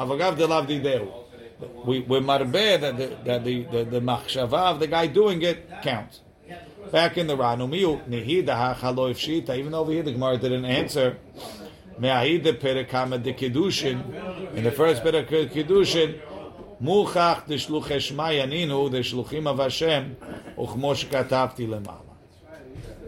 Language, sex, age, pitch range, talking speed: English, male, 50-69, 125-160 Hz, 140 wpm